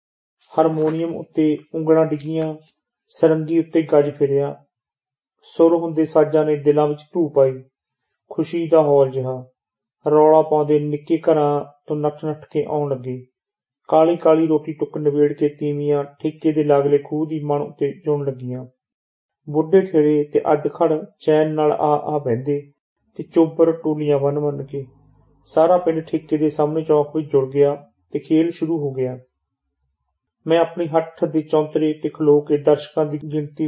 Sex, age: male, 40-59